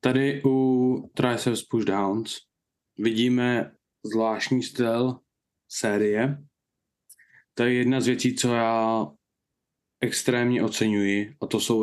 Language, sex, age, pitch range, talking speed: Czech, male, 20-39, 110-135 Hz, 100 wpm